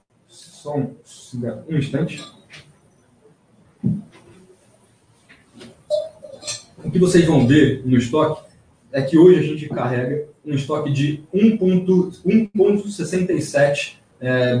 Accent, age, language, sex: Brazilian, 20-39, Portuguese, male